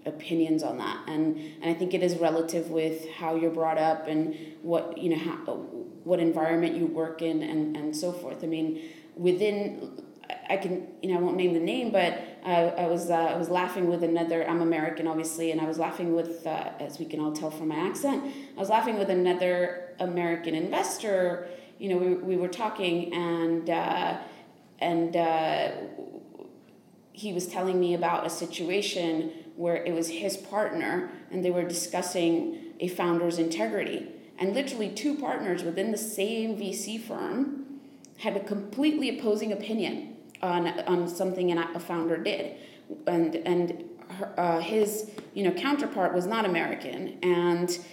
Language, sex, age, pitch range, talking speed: English, female, 20-39, 165-195 Hz, 170 wpm